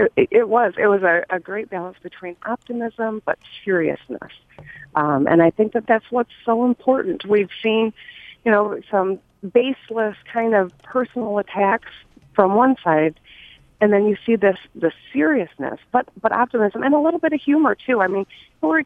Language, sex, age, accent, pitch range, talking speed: English, female, 40-59, American, 175-220 Hz, 175 wpm